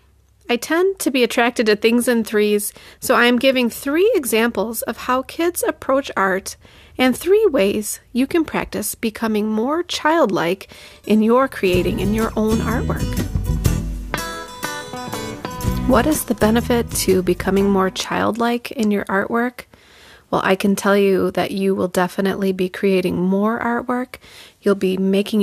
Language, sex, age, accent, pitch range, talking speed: English, female, 30-49, American, 195-250 Hz, 145 wpm